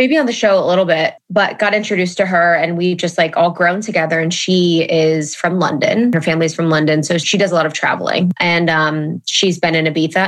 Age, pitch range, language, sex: 20-39, 165-195 Hz, English, female